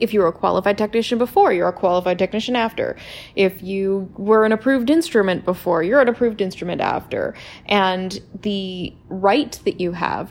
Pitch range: 175-210 Hz